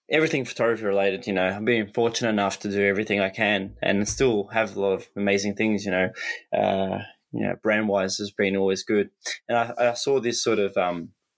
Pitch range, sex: 95-115 Hz, male